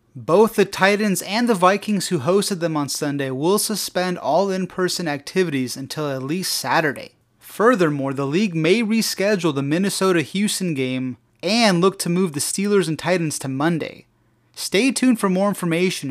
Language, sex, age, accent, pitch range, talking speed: English, male, 30-49, American, 140-195 Hz, 160 wpm